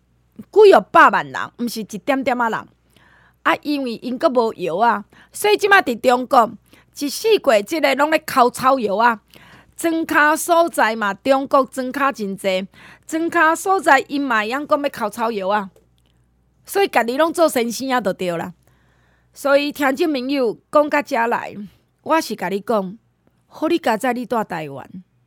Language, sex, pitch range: Chinese, female, 200-290 Hz